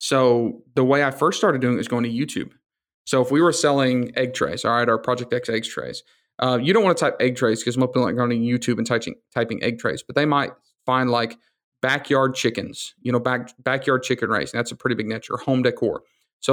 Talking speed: 245 wpm